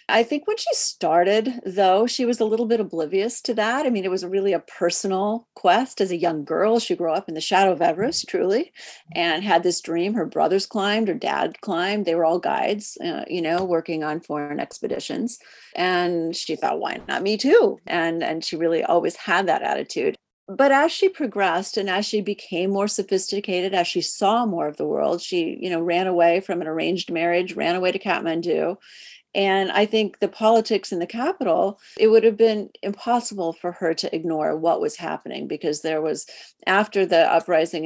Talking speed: 200 wpm